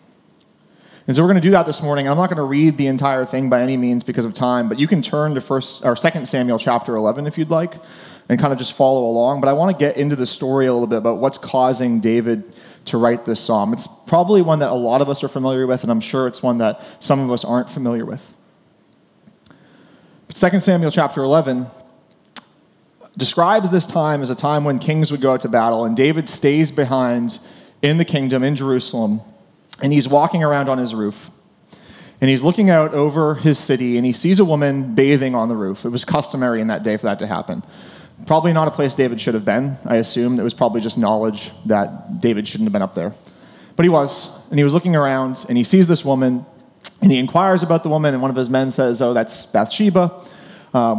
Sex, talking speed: male, 230 wpm